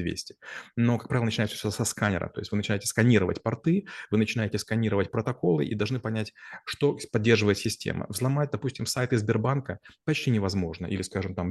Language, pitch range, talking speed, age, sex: Russian, 100-120 Hz, 170 wpm, 30-49, male